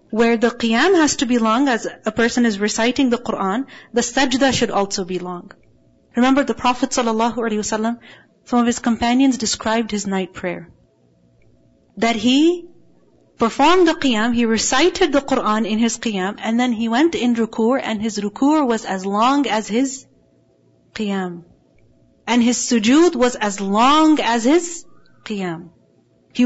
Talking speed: 155 wpm